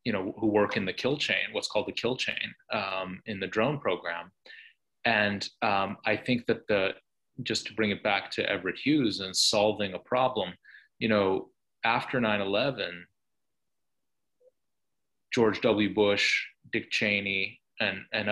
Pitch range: 100-120 Hz